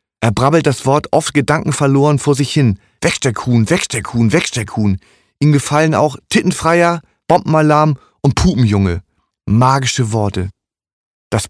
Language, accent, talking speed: German, German, 135 wpm